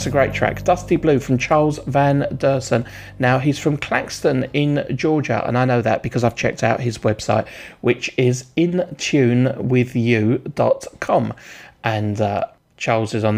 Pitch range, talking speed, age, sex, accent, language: 115-150 Hz, 155 wpm, 40-59, male, British, English